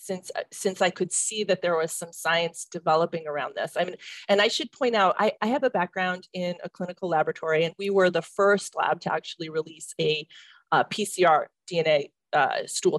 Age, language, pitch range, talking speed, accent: 40-59, English, 165-210 Hz, 205 wpm, American